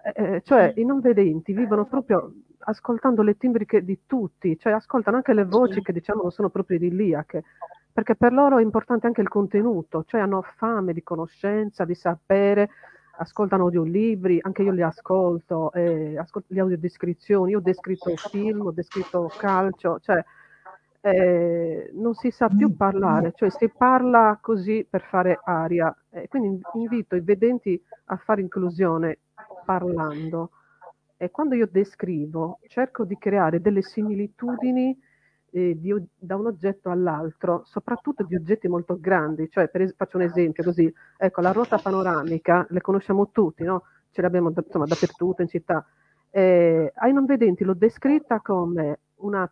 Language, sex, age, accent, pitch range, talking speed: Italian, female, 40-59, native, 175-215 Hz, 155 wpm